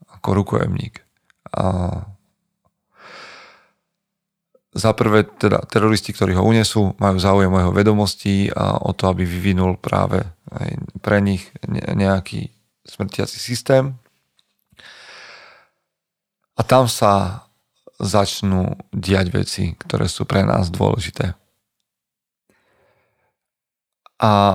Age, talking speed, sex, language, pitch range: 40-59, 90 wpm, male, Slovak, 95-110 Hz